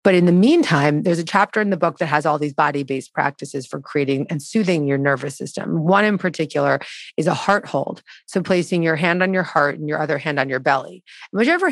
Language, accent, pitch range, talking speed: English, American, 145-185 Hz, 230 wpm